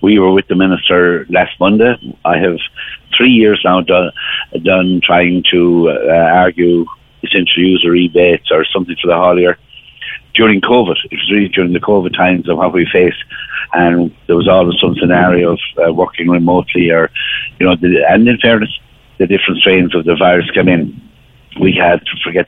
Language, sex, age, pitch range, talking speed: English, male, 60-79, 85-105 Hz, 185 wpm